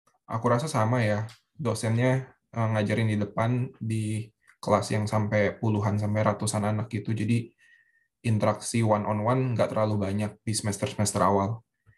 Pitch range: 105-120 Hz